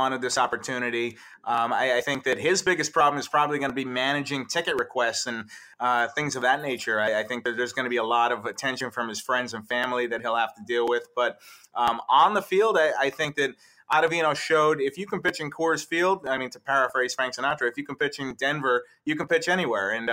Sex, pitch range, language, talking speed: male, 120-150 Hz, English, 245 wpm